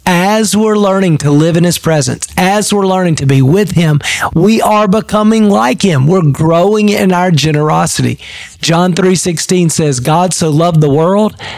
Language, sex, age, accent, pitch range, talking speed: English, male, 40-59, American, 155-195 Hz, 170 wpm